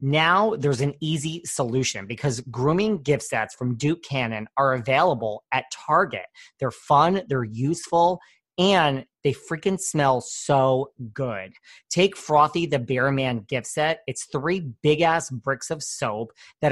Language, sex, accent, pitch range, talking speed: English, male, American, 130-165 Hz, 145 wpm